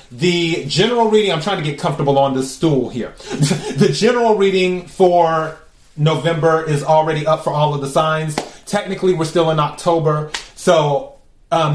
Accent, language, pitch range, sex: American, English, 145-175 Hz, male